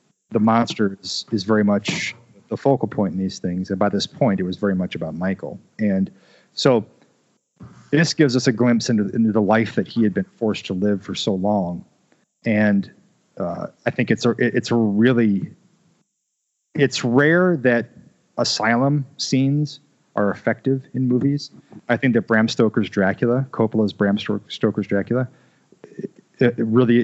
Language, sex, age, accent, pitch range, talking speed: English, male, 40-59, American, 105-130 Hz, 155 wpm